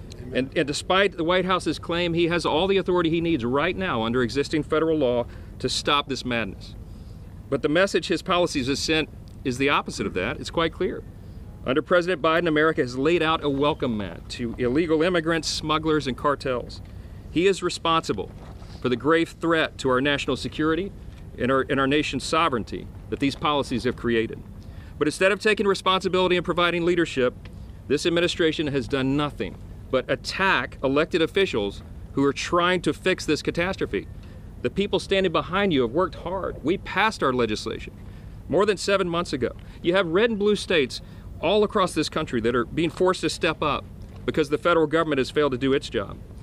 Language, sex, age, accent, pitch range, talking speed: English, male, 40-59, American, 120-175 Hz, 185 wpm